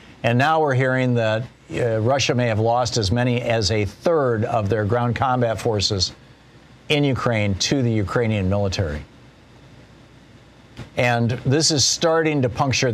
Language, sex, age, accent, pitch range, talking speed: English, male, 50-69, American, 110-130 Hz, 150 wpm